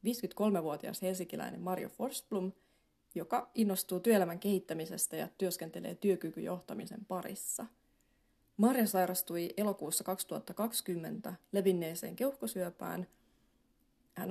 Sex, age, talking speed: female, 30-49, 80 wpm